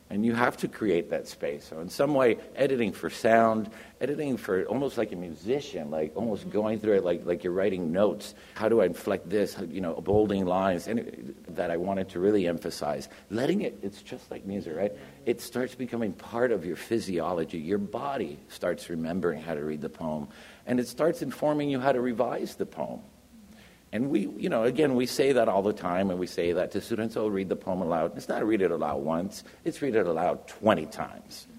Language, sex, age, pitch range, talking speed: English, male, 60-79, 85-115 Hz, 215 wpm